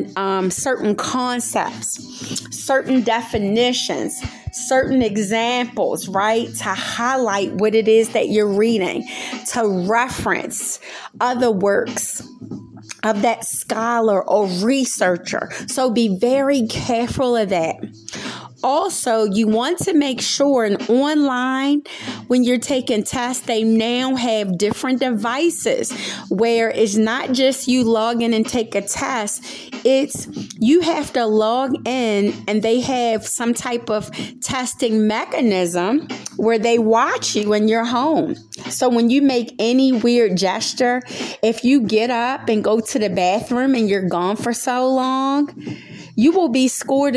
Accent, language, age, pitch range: American, English, 30-49, 215-255 Hz